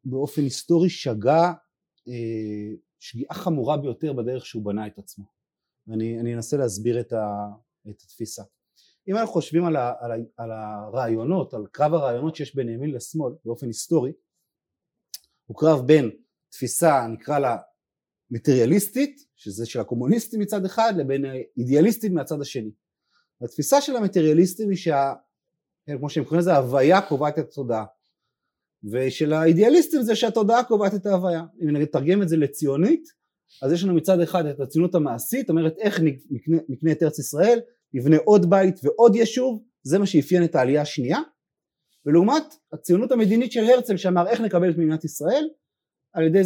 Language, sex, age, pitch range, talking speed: Hebrew, male, 30-49, 135-195 Hz, 150 wpm